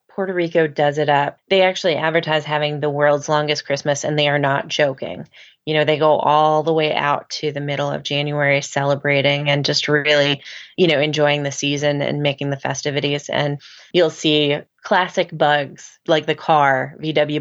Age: 20-39